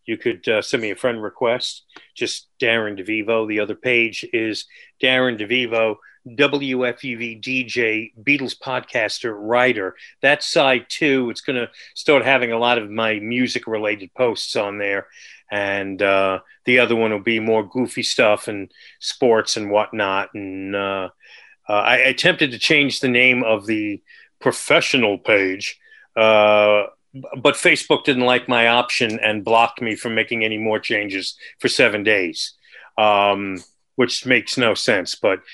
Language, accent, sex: English, American, male